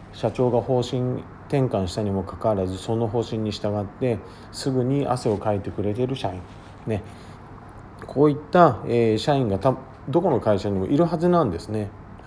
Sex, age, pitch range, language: male, 40-59, 95-130 Hz, Japanese